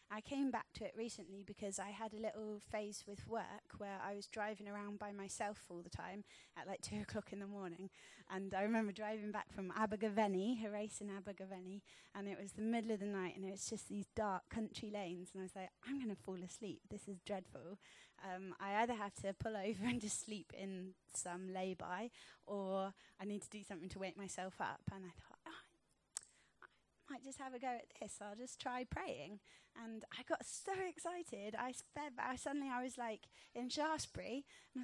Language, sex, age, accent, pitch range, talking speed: English, female, 20-39, British, 200-245 Hz, 210 wpm